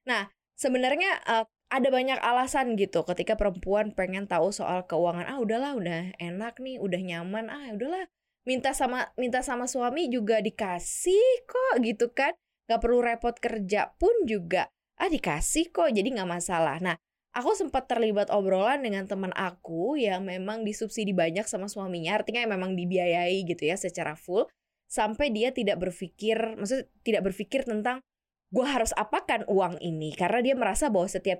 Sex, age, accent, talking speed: female, 20-39, native, 160 wpm